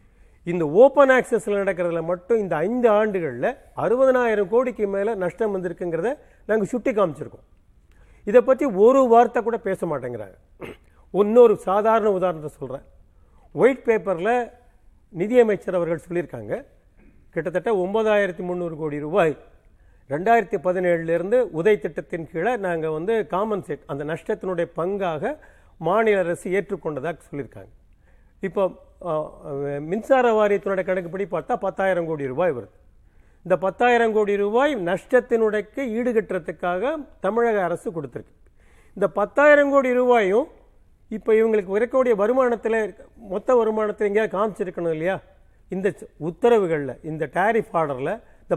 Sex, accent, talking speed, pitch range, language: male, native, 110 wpm, 165-225 Hz, Tamil